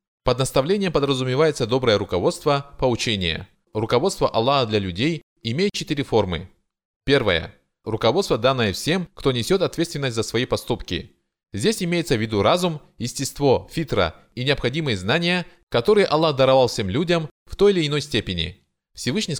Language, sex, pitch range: Russian, male, 110-165 Hz